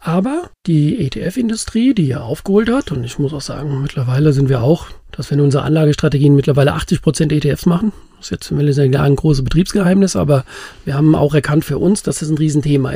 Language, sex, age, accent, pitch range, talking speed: German, male, 50-69, German, 145-205 Hz, 200 wpm